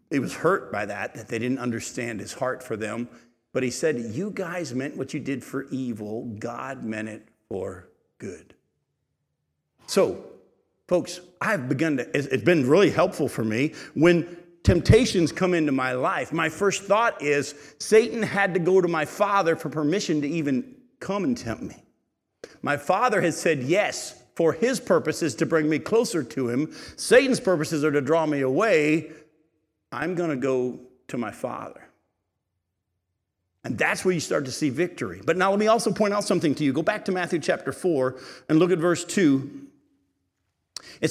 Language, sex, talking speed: English, male, 180 wpm